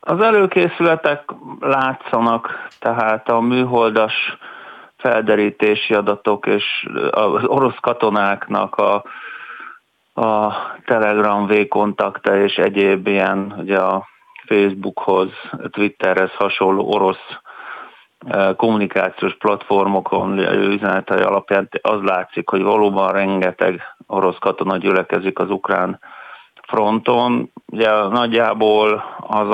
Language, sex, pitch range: Hungarian, male, 95-110 Hz